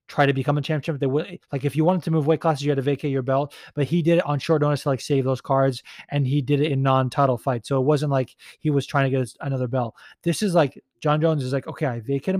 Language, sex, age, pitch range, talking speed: English, male, 20-39, 125-150 Hz, 300 wpm